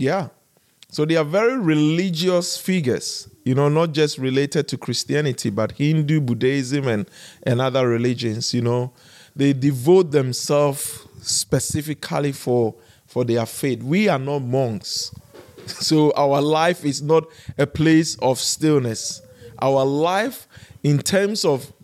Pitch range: 130-170 Hz